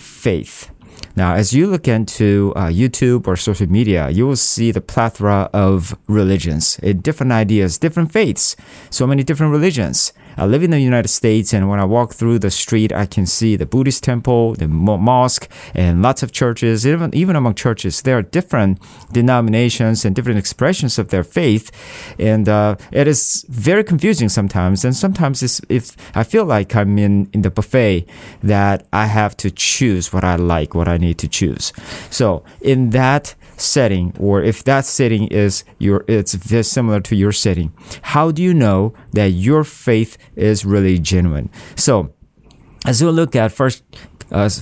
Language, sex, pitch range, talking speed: English, male, 100-130 Hz, 170 wpm